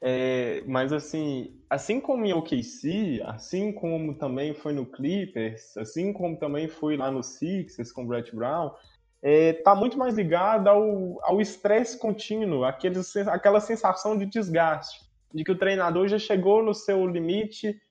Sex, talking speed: male, 160 wpm